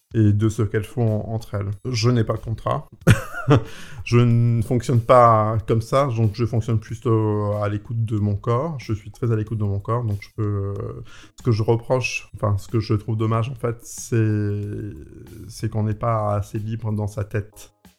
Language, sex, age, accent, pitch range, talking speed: French, male, 20-39, French, 105-115 Hz, 205 wpm